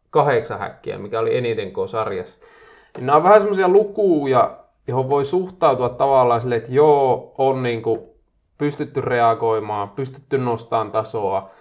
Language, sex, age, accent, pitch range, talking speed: Finnish, male, 20-39, native, 115-150 Hz, 135 wpm